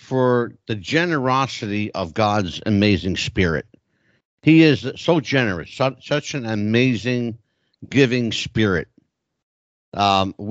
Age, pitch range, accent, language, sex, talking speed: 60-79, 110-155 Hz, American, English, male, 95 wpm